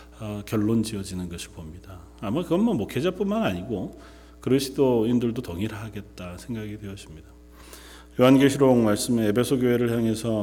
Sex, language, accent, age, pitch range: male, Korean, native, 40-59, 95-125 Hz